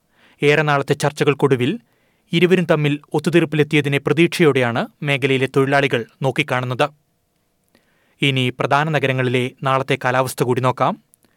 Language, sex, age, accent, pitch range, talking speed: Malayalam, male, 30-49, native, 130-150 Hz, 90 wpm